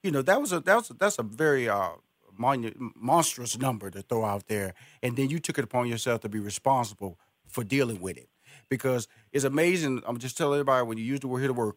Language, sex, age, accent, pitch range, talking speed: English, male, 40-59, American, 115-150 Hz, 245 wpm